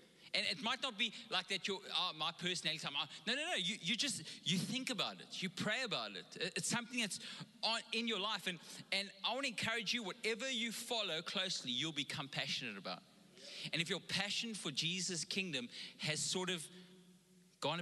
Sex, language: male, English